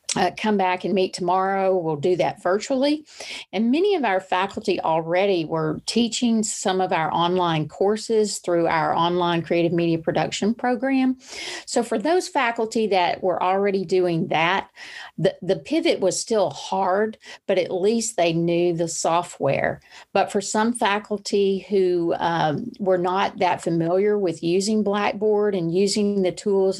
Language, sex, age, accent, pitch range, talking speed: English, female, 40-59, American, 175-210 Hz, 155 wpm